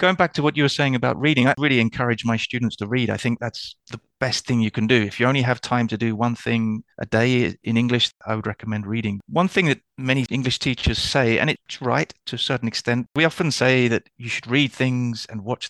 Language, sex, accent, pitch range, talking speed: English, male, British, 110-130 Hz, 250 wpm